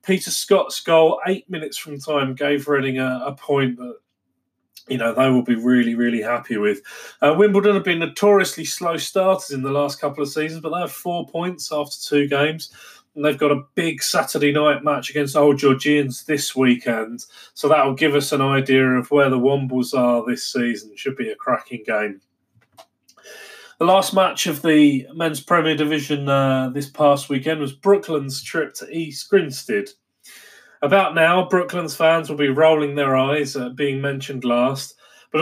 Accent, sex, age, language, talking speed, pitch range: British, male, 30-49, English, 185 wpm, 135-165 Hz